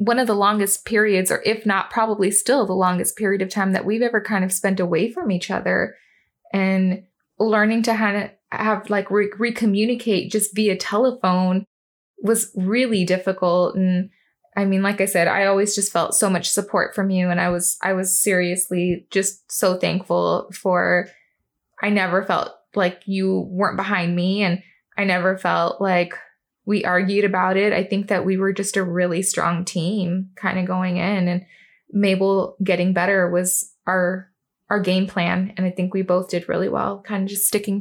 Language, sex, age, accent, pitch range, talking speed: English, female, 20-39, American, 185-210 Hz, 185 wpm